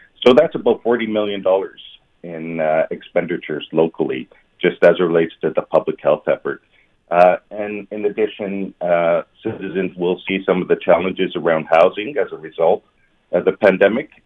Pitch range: 85-95 Hz